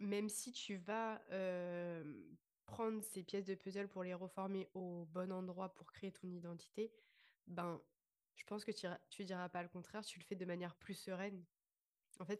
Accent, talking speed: French, 190 wpm